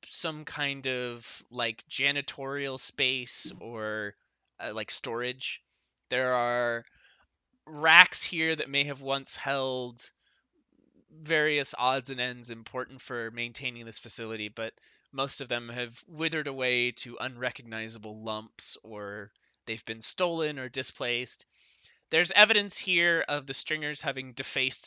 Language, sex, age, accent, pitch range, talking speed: English, male, 20-39, American, 115-145 Hz, 125 wpm